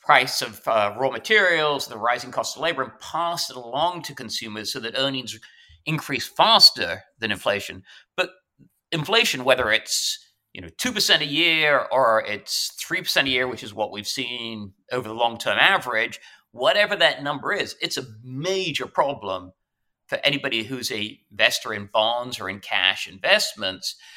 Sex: male